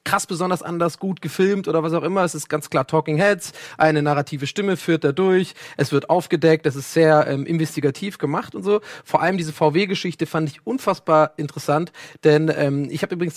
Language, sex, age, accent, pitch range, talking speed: German, male, 30-49, German, 145-175 Hz, 200 wpm